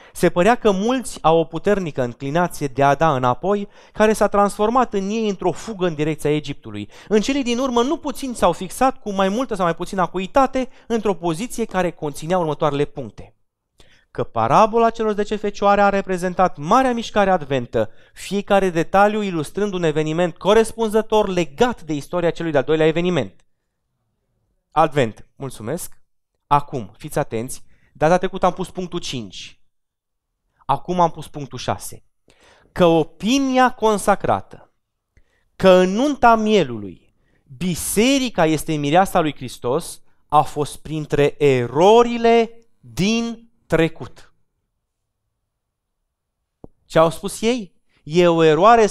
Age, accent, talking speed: 20-39, native, 130 wpm